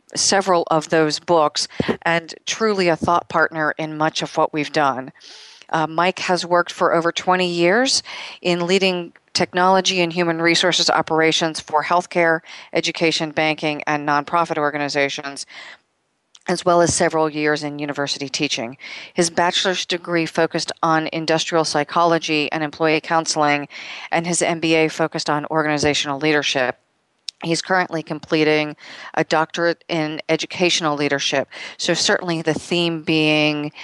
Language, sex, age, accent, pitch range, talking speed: English, female, 40-59, American, 150-175 Hz, 135 wpm